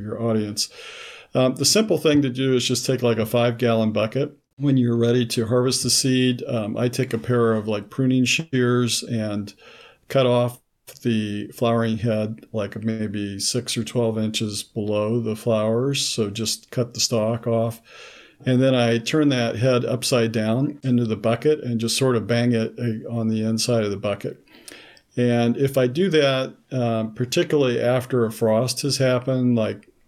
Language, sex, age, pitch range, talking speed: English, male, 50-69, 110-125 Hz, 175 wpm